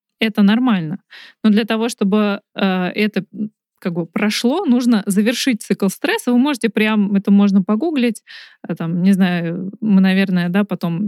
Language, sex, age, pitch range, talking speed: Russian, female, 20-39, 195-225 Hz, 130 wpm